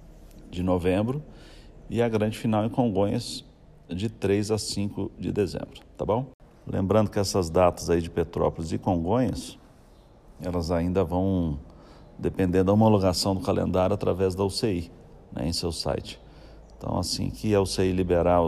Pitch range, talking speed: 85-100 Hz, 150 wpm